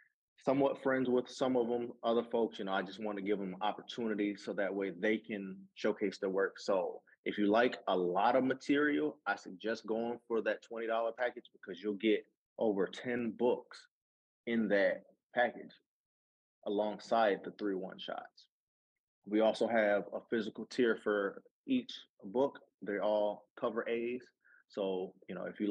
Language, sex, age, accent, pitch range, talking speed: English, male, 30-49, American, 100-115 Hz, 170 wpm